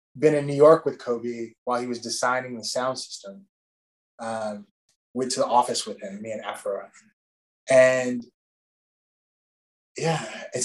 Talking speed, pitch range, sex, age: 145 wpm, 120-155 Hz, male, 20-39